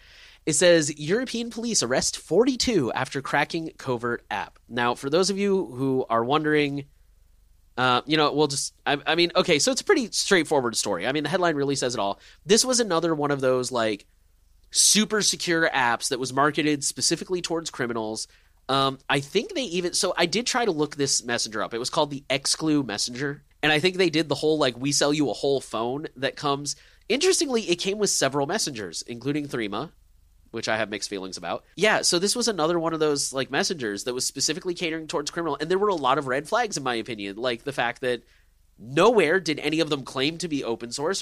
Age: 30-49